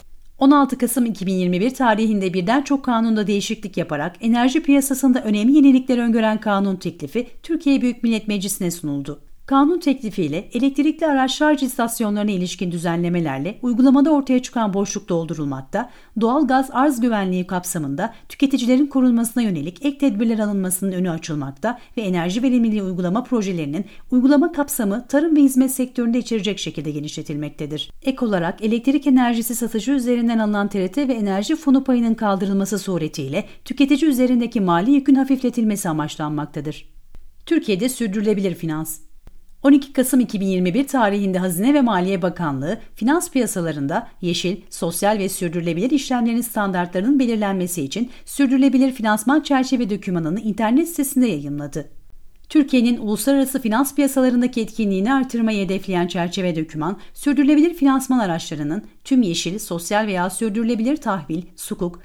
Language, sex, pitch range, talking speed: Turkish, female, 180-260 Hz, 125 wpm